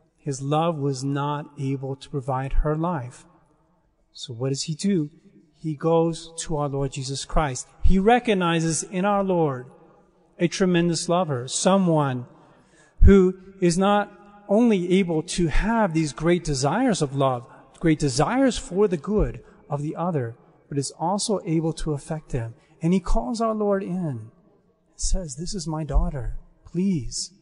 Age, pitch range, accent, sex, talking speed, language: 40-59, 145-190 Hz, American, male, 155 wpm, English